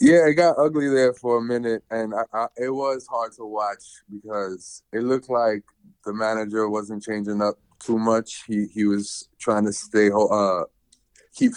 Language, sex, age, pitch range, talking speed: English, male, 20-39, 105-130 Hz, 180 wpm